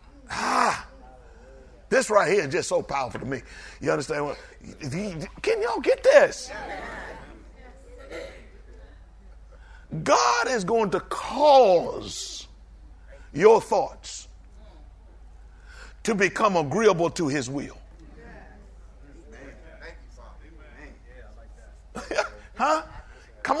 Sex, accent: male, American